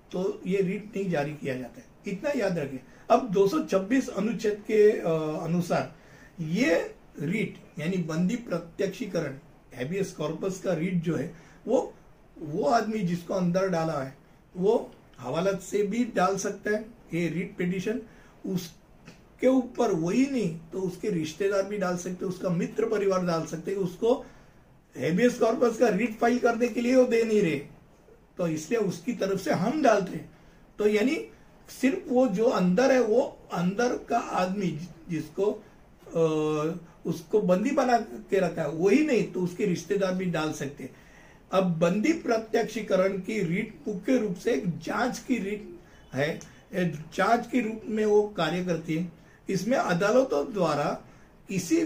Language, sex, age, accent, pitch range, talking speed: Hindi, male, 60-79, native, 170-225 Hz, 155 wpm